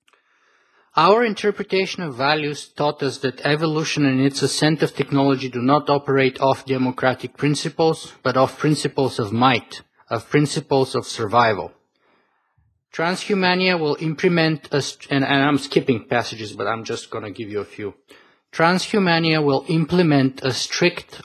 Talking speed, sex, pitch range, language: 145 wpm, male, 135-165 Hz, English